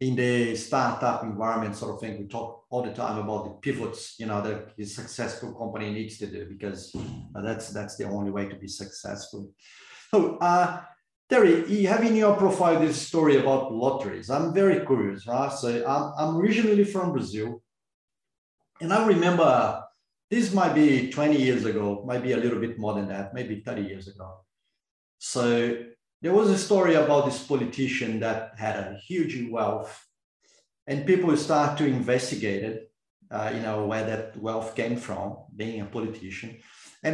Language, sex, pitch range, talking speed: English, male, 110-150 Hz, 170 wpm